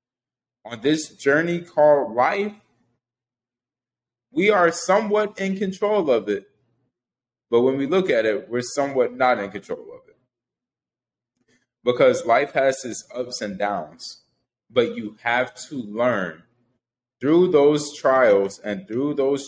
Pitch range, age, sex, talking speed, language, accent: 120-150 Hz, 20-39, male, 130 wpm, English, American